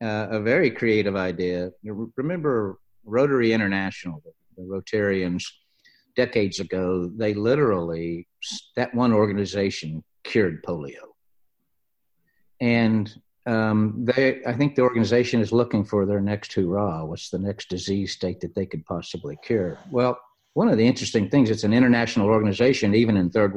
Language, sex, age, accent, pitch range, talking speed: English, male, 50-69, American, 95-125 Hz, 145 wpm